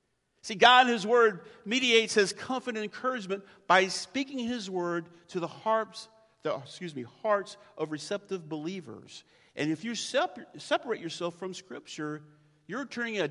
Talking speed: 135 wpm